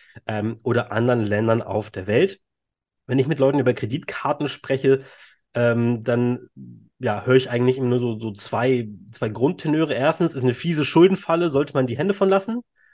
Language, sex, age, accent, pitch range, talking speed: German, male, 30-49, German, 115-150 Hz, 175 wpm